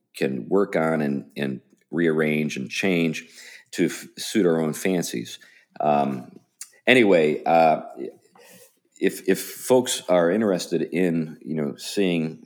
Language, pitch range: English, 80-110 Hz